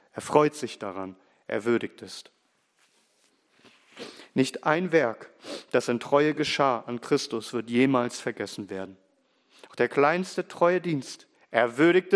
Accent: German